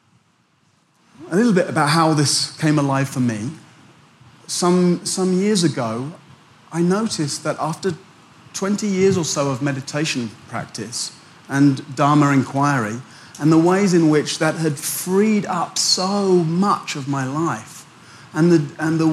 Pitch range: 140-180 Hz